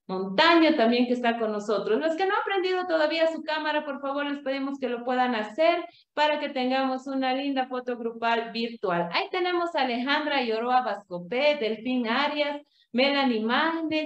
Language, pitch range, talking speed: Spanish, 225-295 Hz, 170 wpm